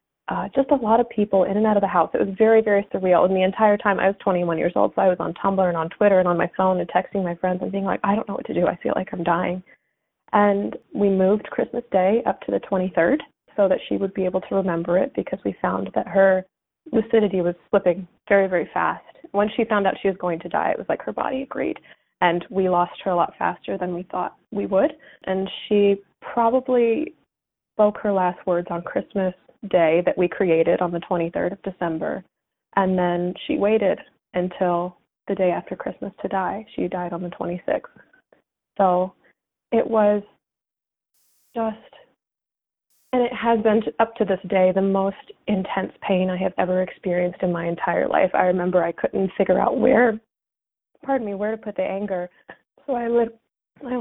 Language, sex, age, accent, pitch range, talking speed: English, female, 20-39, American, 180-210 Hz, 210 wpm